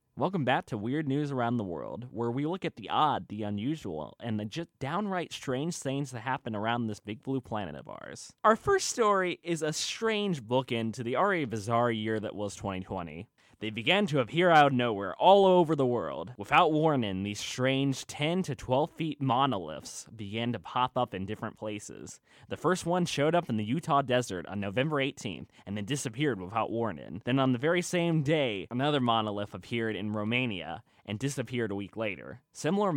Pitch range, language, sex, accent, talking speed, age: 110-160 Hz, English, male, American, 195 wpm, 20-39